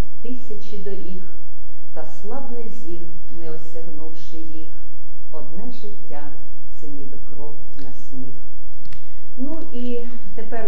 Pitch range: 175-230 Hz